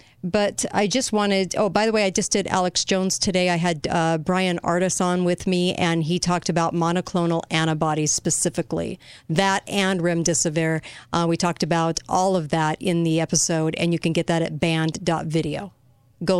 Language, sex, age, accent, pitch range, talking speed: English, female, 40-59, American, 160-185 Hz, 185 wpm